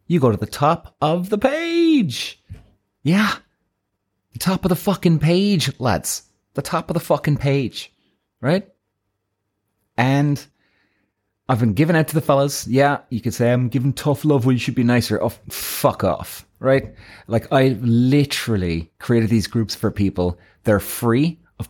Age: 30-49